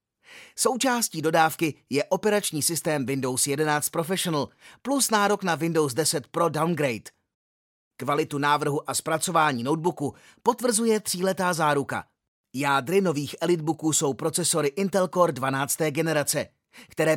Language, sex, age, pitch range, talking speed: Czech, male, 30-49, 140-185 Hz, 115 wpm